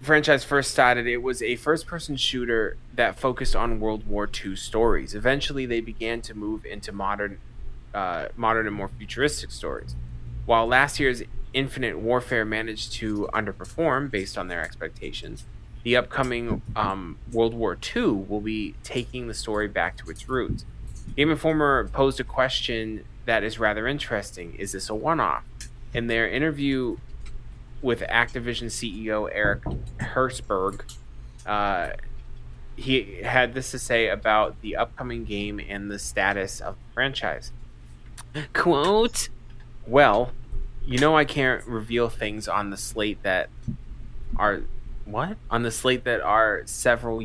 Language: English